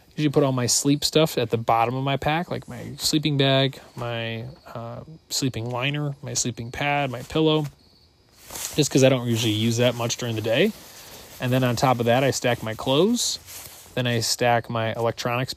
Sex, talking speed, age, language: male, 195 wpm, 20-39, English